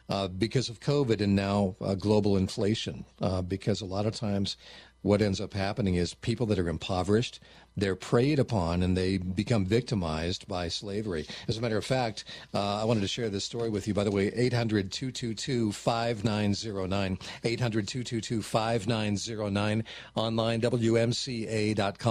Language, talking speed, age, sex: English, 150 wpm, 40-59, male